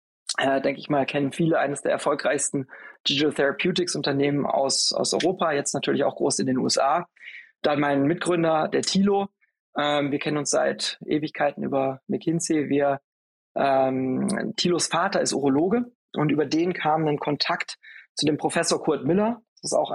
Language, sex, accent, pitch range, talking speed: German, male, German, 140-170 Hz, 160 wpm